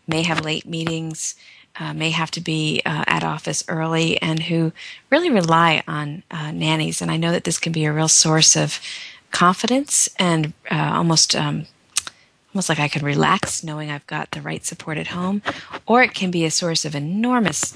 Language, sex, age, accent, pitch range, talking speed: English, female, 40-59, American, 155-180 Hz, 195 wpm